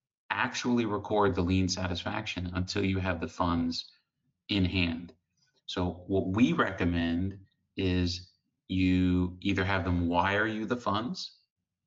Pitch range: 90-100 Hz